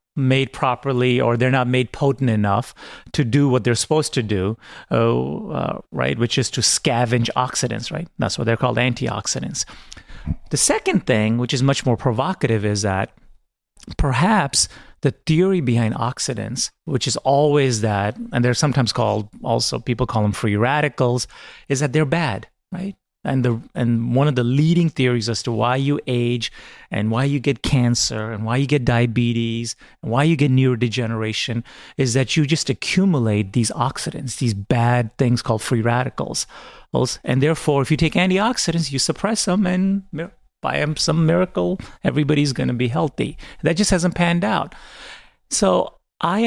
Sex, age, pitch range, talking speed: male, 30-49, 120-150 Hz, 165 wpm